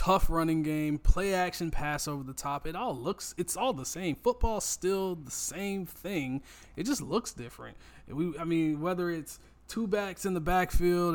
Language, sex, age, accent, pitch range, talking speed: English, male, 20-39, American, 135-180 Hz, 190 wpm